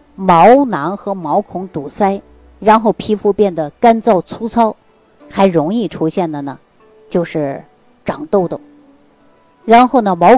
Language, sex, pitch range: Chinese, female, 165-230 Hz